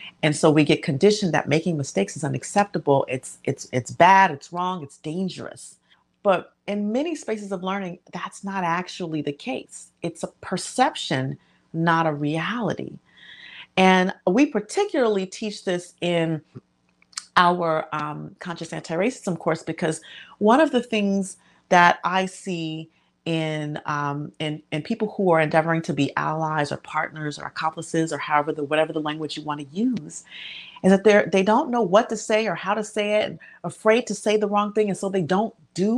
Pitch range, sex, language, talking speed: 155-205 Hz, female, English, 175 wpm